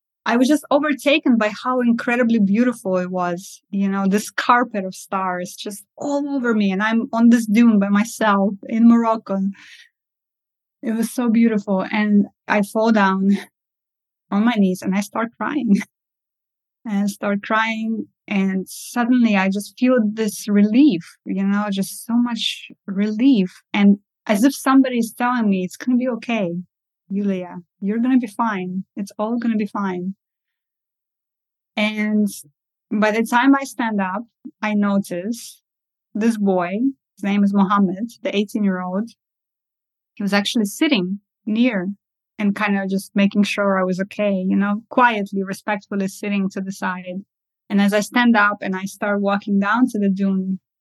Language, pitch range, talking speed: English, 195-235 Hz, 160 wpm